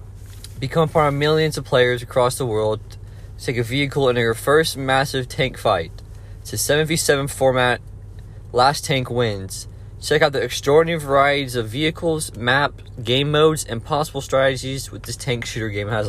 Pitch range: 105-135 Hz